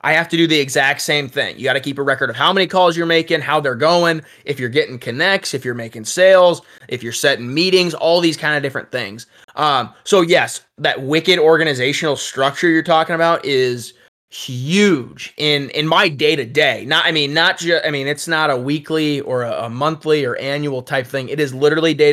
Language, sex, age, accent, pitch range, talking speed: English, male, 20-39, American, 135-160 Hz, 220 wpm